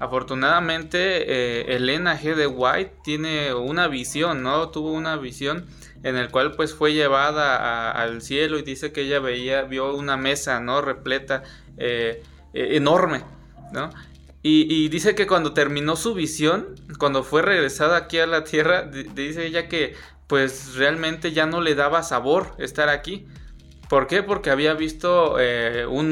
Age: 20-39